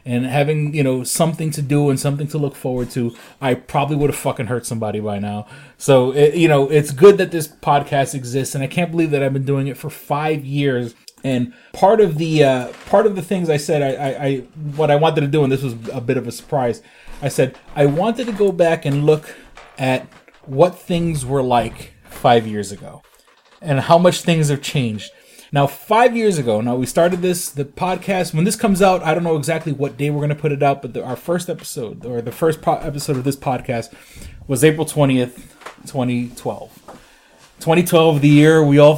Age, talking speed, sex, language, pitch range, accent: 30-49, 215 wpm, male, English, 125-155 Hz, American